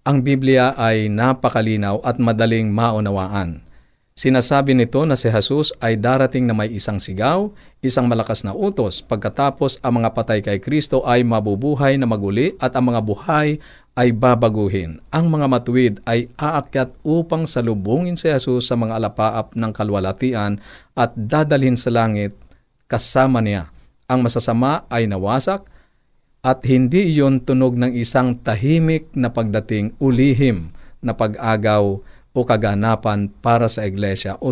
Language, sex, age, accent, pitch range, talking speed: Filipino, male, 50-69, native, 105-135 Hz, 140 wpm